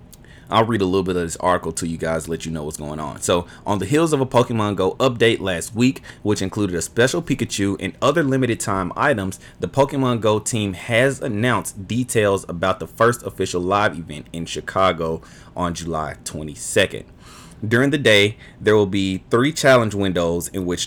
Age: 30-49